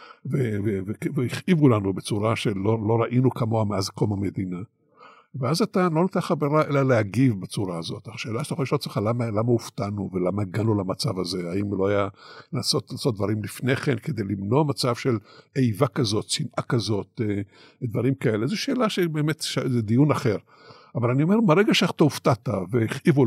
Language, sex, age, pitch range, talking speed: Hebrew, male, 60-79, 110-145 Hz, 170 wpm